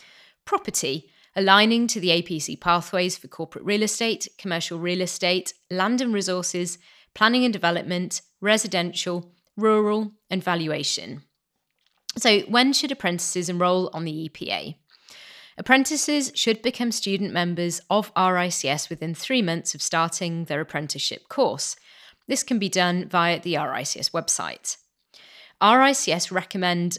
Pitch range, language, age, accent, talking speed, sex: 170-210 Hz, English, 30-49, British, 125 wpm, female